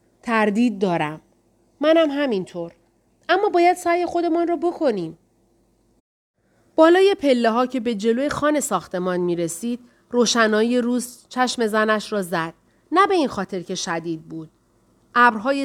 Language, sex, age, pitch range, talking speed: Persian, female, 30-49, 195-265 Hz, 135 wpm